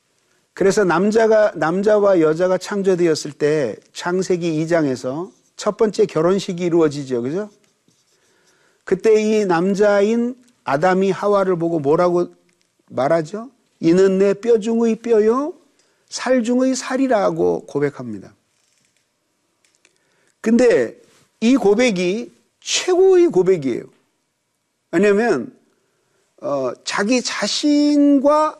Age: 50-69